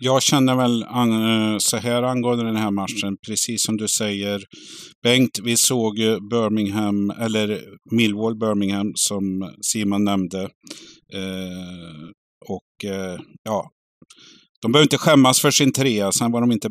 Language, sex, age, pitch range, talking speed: Swedish, male, 50-69, 100-115 Hz, 130 wpm